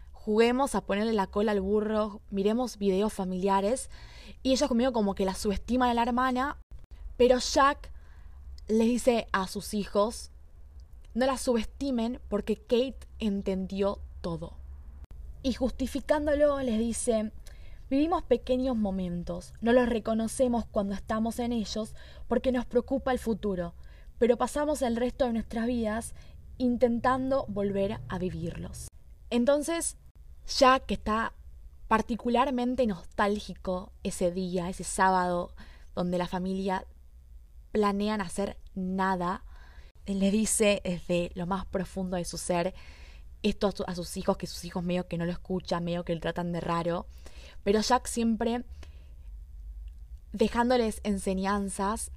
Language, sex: Spanish, female